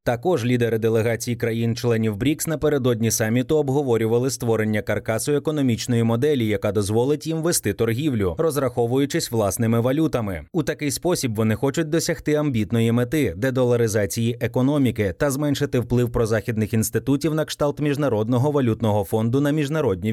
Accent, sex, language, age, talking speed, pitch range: native, male, Ukrainian, 30-49, 130 wpm, 115-145 Hz